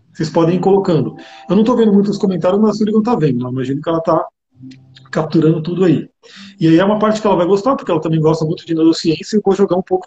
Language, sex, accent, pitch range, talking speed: Portuguese, male, Brazilian, 165-215 Hz, 270 wpm